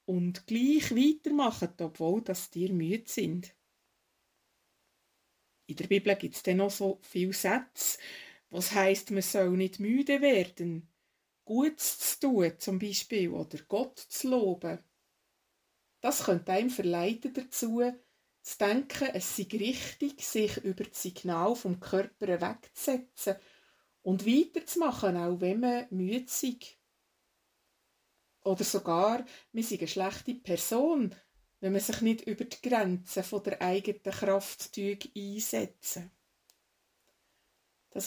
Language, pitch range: German, 185-245 Hz